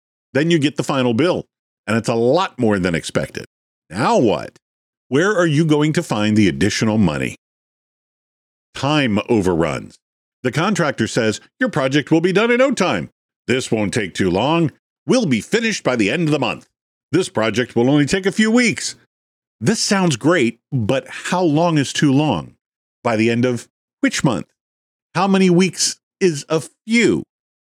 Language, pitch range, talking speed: English, 120-175 Hz, 175 wpm